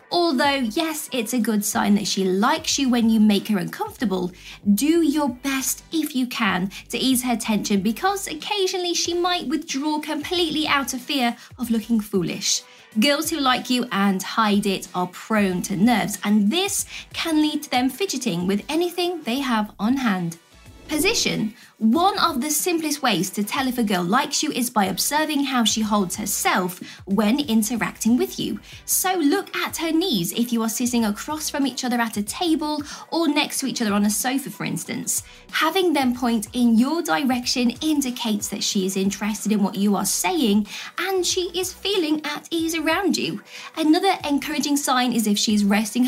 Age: 20-39